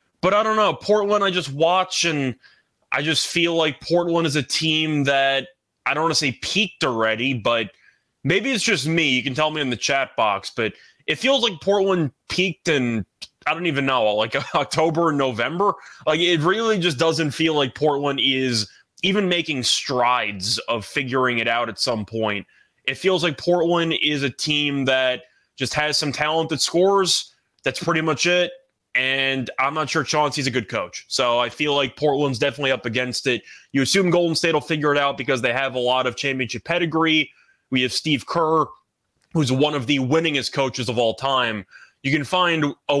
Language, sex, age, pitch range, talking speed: English, male, 20-39, 125-160 Hz, 195 wpm